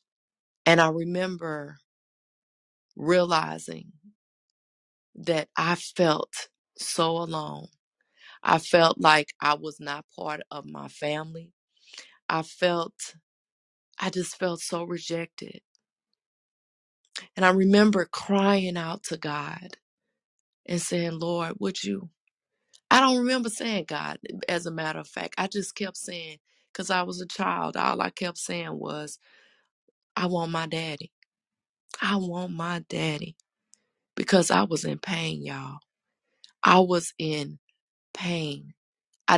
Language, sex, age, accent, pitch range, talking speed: English, female, 20-39, American, 155-180 Hz, 125 wpm